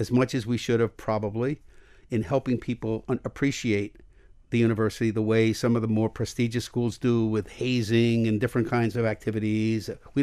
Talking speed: 175 wpm